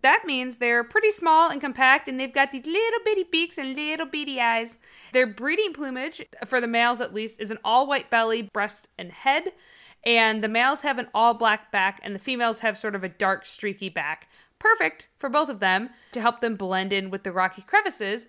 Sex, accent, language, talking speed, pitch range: female, American, English, 210 wpm, 190-260 Hz